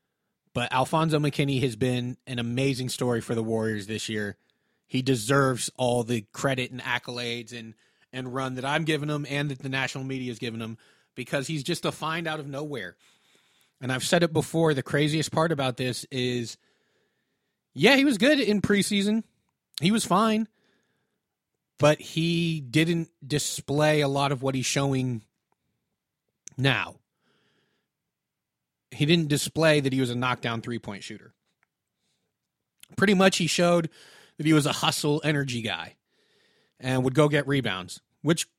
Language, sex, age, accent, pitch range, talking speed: English, male, 30-49, American, 130-165 Hz, 155 wpm